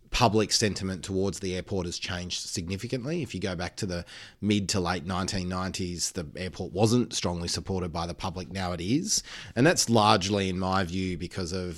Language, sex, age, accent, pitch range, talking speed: English, male, 30-49, Australian, 90-105 Hz, 190 wpm